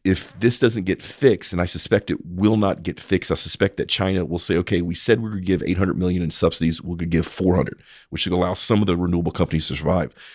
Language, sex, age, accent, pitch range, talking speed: English, male, 40-59, American, 85-110 Hz, 255 wpm